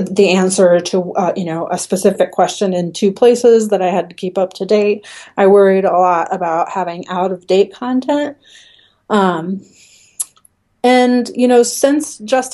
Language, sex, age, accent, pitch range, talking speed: English, female, 30-49, American, 185-230 Hz, 165 wpm